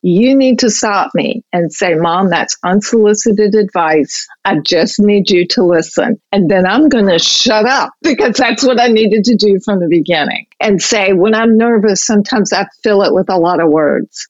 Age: 50-69